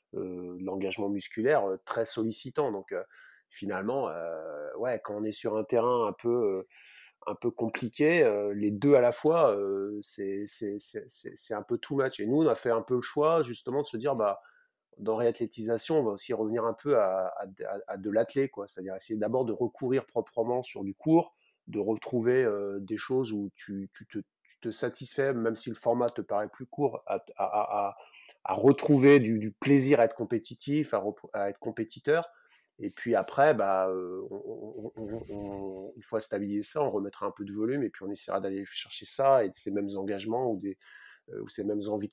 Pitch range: 100-135 Hz